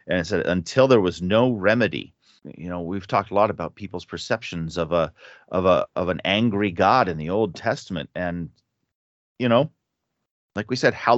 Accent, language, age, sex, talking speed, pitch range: American, English, 40-59, male, 195 wpm, 85-110 Hz